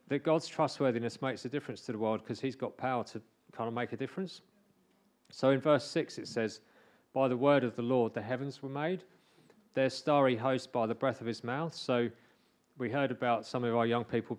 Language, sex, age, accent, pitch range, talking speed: English, male, 40-59, British, 115-140 Hz, 220 wpm